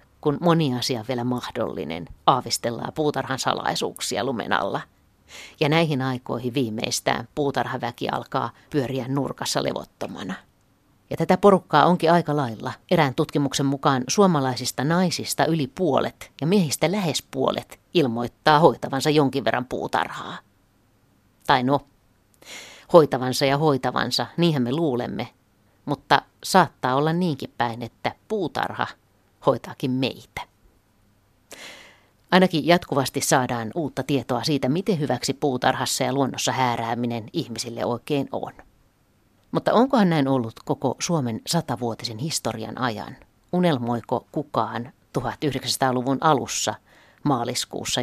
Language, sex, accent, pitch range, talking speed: Finnish, female, native, 120-150 Hz, 110 wpm